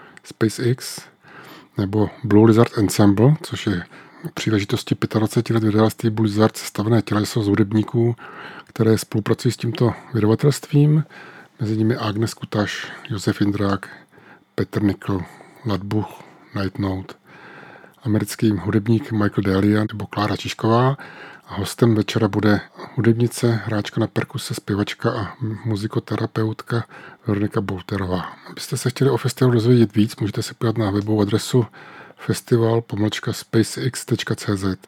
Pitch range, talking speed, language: 105-120 Hz, 110 wpm, Czech